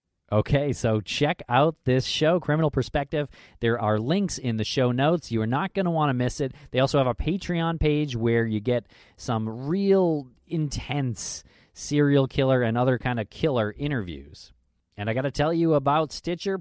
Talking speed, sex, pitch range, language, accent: 190 wpm, male, 120-150 Hz, English, American